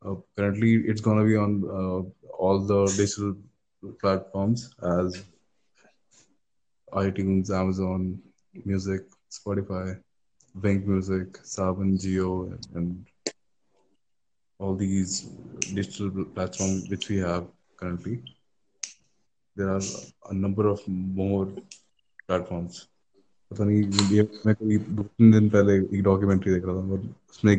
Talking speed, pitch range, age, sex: 115 wpm, 95-105 Hz, 20-39, male